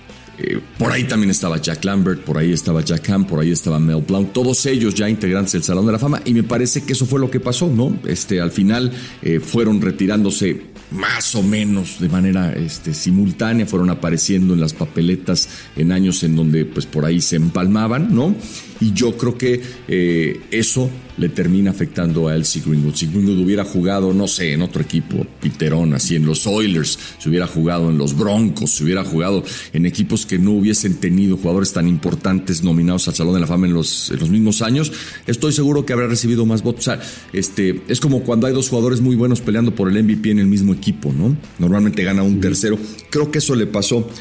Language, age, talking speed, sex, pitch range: English, 40-59, 210 wpm, male, 90-115 Hz